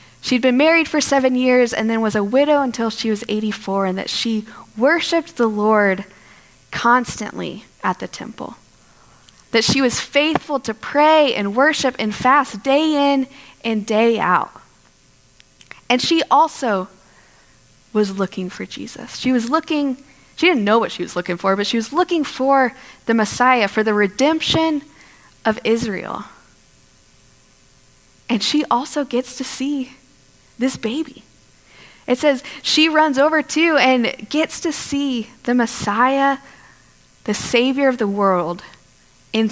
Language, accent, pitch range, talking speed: English, American, 220-290 Hz, 145 wpm